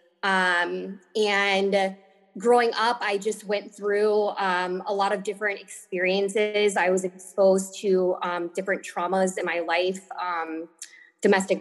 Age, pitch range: 20-39, 175-200 Hz